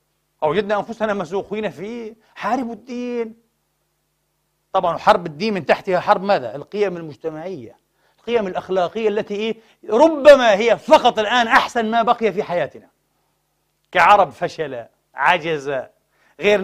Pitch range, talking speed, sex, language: 180-235 Hz, 110 wpm, male, Arabic